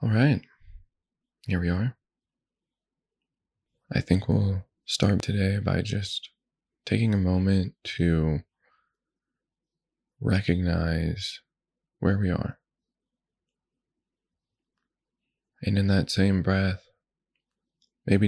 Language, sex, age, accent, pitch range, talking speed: English, male, 20-39, American, 85-95 Hz, 85 wpm